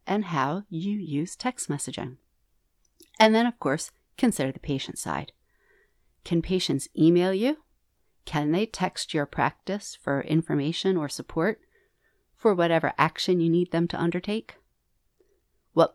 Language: English